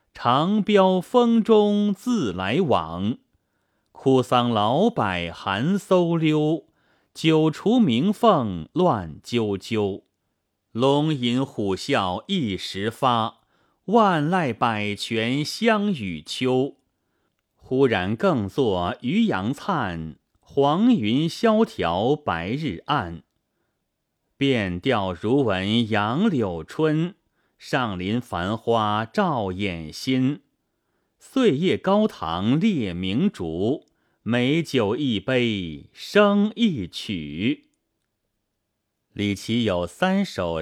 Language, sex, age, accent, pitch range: Chinese, male, 30-49, native, 100-165 Hz